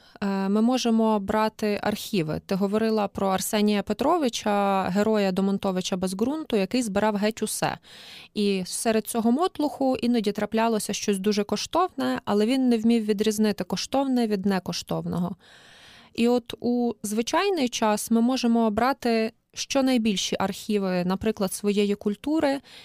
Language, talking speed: Ukrainian, 125 wpm